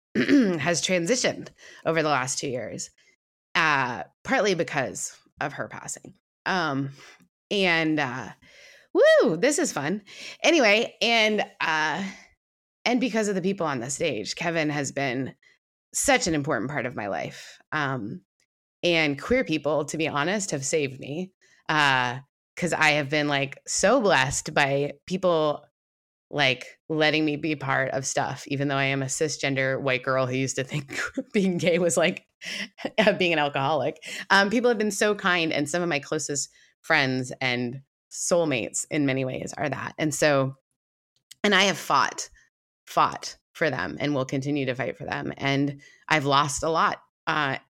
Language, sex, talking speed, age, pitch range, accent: English, female, 160 wpm, 20-39, 140-180 Hz, American